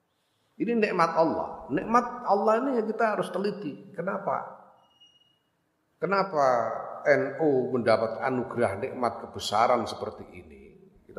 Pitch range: 115-160 Hz